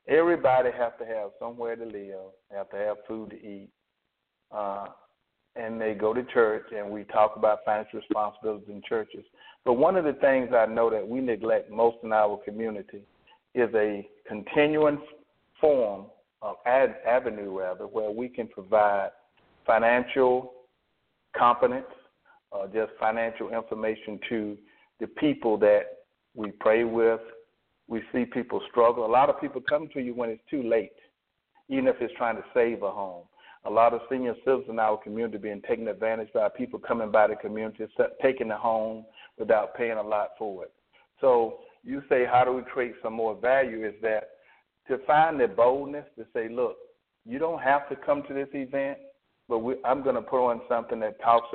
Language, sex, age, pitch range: English, male, 50-69, 110-140 Hz